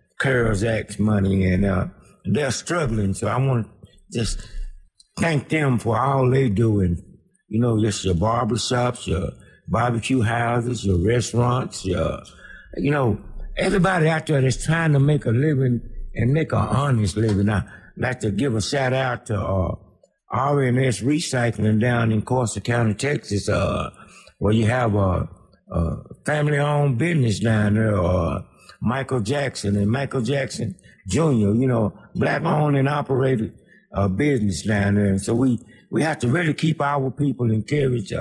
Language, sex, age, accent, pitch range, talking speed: English, male, 60-79, American, 105-135 Hz, 160 wpm